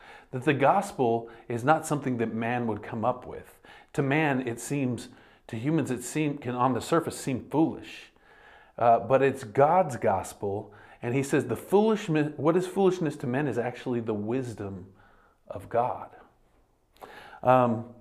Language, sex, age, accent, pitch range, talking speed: English, male, 40-59, American, 110-135 Hz, 160 wpm